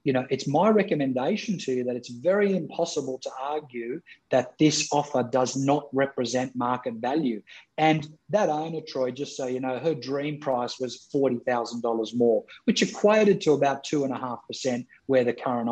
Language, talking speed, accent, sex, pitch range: English, 180 wpm, Australian, male, 120-150 Hz